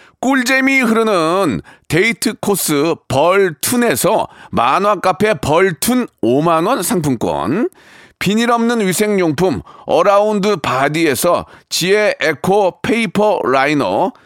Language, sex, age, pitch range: Korean, male, 40-59, 180-225 Hz